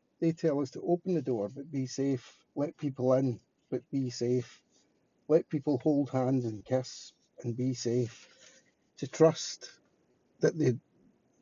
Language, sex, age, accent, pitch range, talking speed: English, male, 50-69, British, 130-160 Hz, 150 wpm